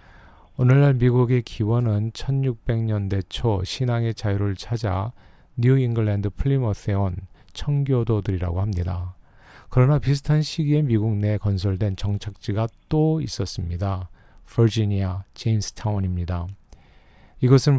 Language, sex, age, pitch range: Korean, male, 40-59, 95-125 Hz